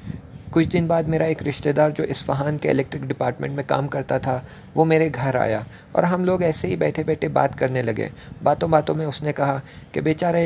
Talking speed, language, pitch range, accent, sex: 195 wpm, English, 130-160 Hz, Indian, male